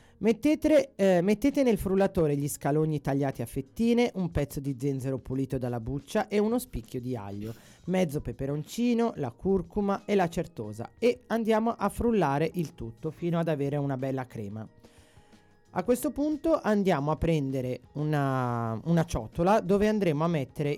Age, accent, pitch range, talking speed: 30-49, native, 130-190 Hz, 155 wpm